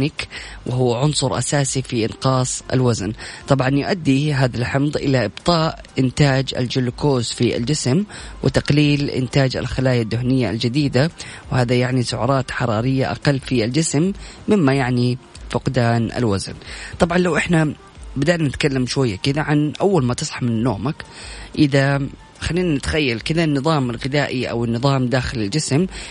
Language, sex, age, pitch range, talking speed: Arabic, female, 20-39, 125-150 Hz, 125 wpm